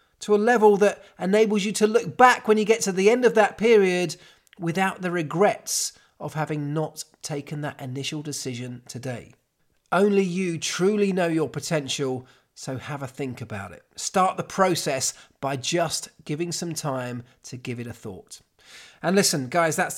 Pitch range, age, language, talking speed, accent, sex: 150-205 Hz, 40-59, English, 175 wpm, British, male